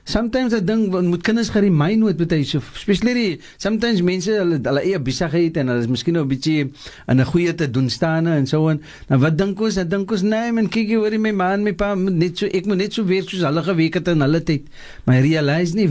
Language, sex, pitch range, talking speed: English, male, 145-195 Hz, 230 wpm